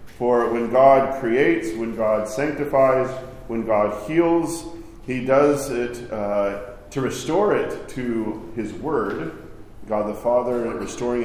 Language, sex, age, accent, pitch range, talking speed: English, male, 40-59, American, 110-135 Hz, 130 wpm